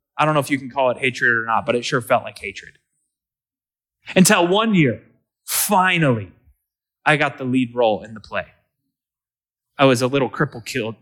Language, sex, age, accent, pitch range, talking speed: English, male, 20-39, American, 120-165 Hz, 185 wpm